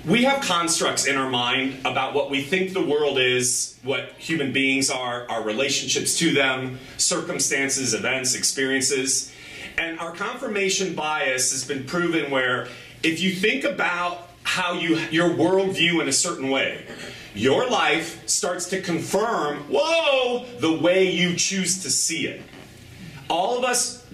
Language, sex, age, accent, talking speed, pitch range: English, male, 40-59, American, 150 wpm, 135-190 Hz